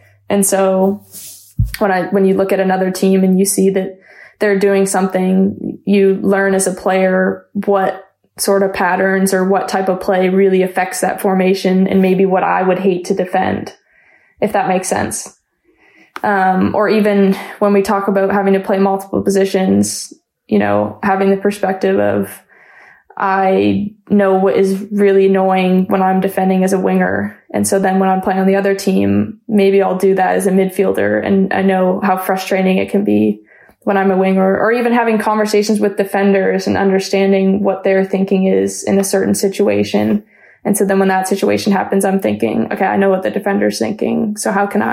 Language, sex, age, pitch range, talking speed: English, female, 20-39, 185-200 Hz, 190 wpm